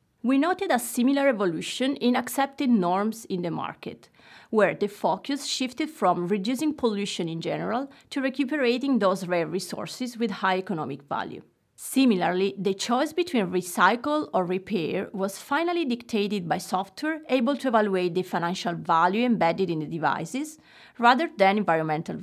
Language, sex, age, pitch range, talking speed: French, female, 30-49, 185-265 Hz, 145 wpm